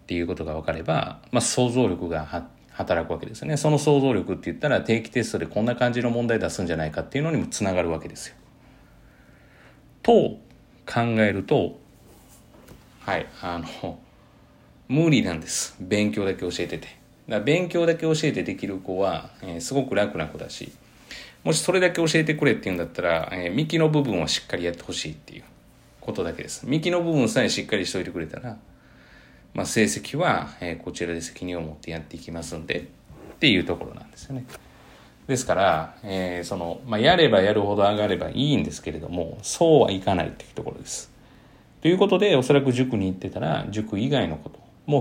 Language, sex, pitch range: Japanese, male, 90-130 Hz